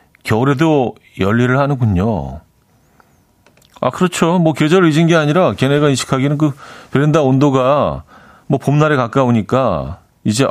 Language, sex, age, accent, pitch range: Korean, male, 40-59, native, 105-150 Hz